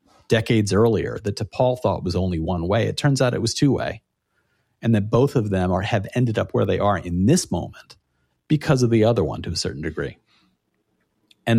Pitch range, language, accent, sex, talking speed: 90-110 Hz, English, American, male, 210 wpm